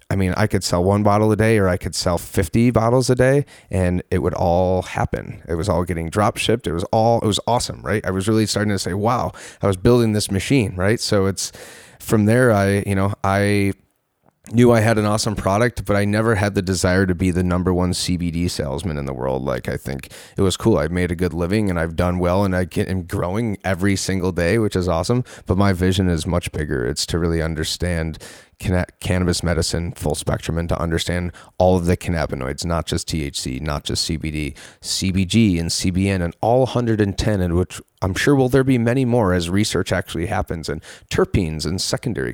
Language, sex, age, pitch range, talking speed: English, male, 30-49, 85-105 Hz, 215 wpm